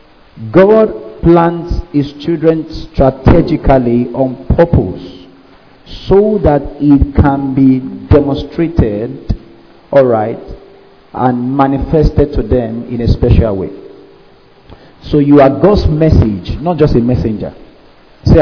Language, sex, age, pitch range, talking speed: English, male, 50-69, 135-170 Hz, 105 wpm